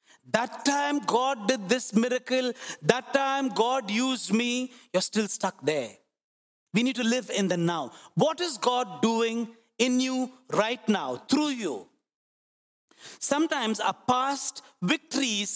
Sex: male